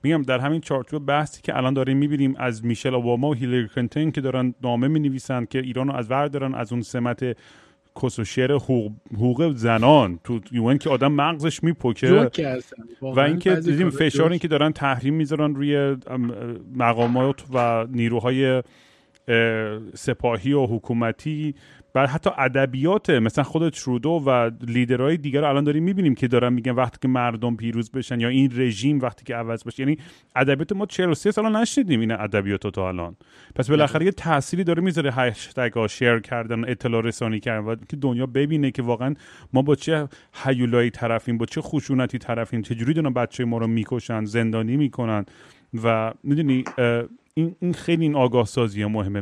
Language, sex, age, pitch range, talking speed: Persian, male, 30-49, 120-145 Hz, 160 wpm